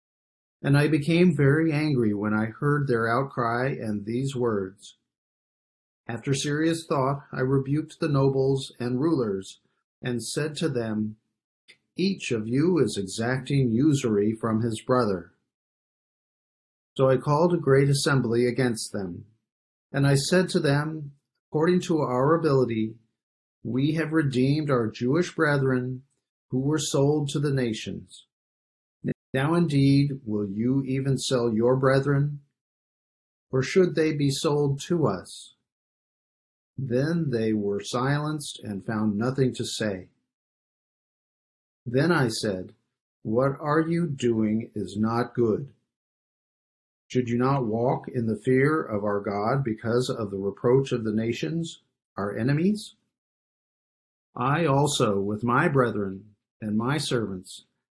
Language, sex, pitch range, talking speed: English, male, 110-145 Hz, 130 wpm